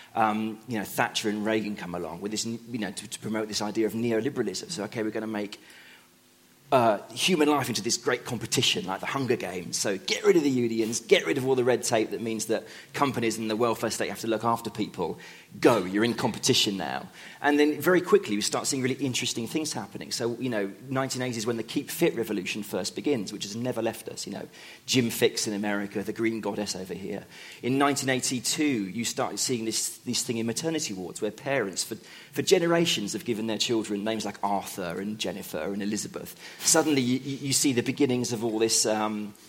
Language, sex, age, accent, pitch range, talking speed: English, male, 30-49, British, 105-130 Hz, 215 wpm